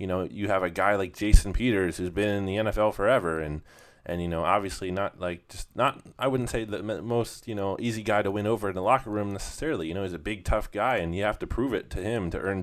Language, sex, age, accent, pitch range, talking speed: English, male, 20-39, American, 90-110 Hz, 275 wpm